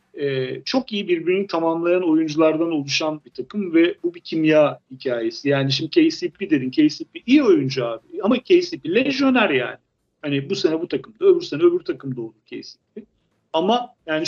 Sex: male